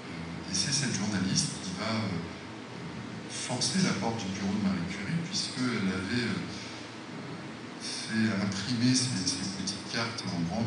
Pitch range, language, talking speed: 85-115 Hz, French, 140 wpm